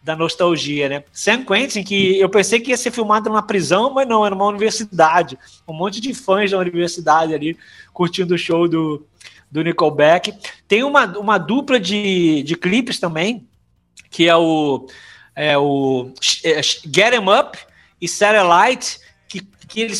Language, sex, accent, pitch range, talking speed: Portuguese, male, Brazilian, 165-205 Hz, 155 wpm